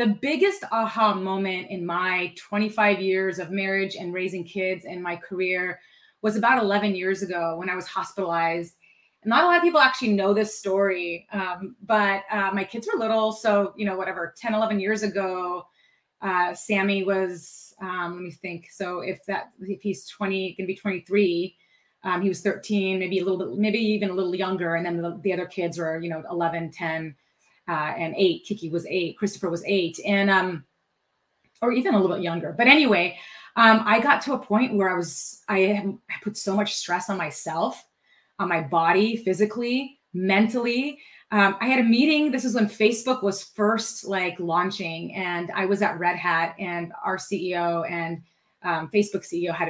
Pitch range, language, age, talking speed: 175-210 Hz, English, 30-49, 190 wpm